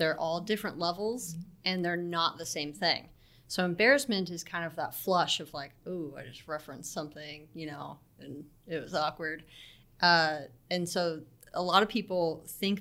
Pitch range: 155-180 Hz